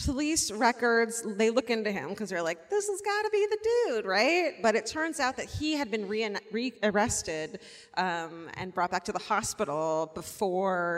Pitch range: 165-220 Hz